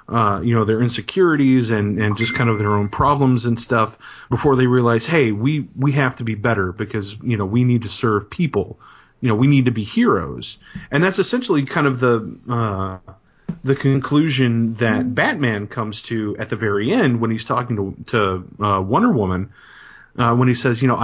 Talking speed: 205 wpm